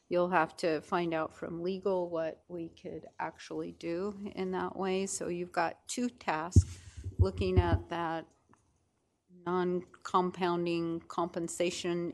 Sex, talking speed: female, 125 wpm